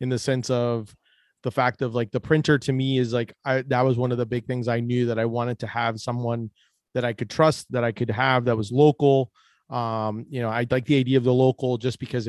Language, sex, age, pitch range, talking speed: English, male, 30-49, 120-140 Hz, 260 wpm